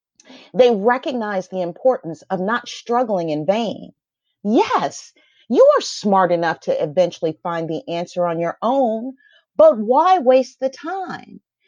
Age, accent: 40-59, American